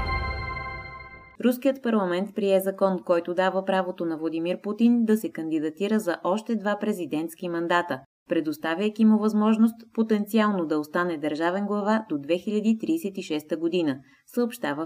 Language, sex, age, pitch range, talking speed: Bulgarian, female, 20-39, 160-210 Hz, 120 wpm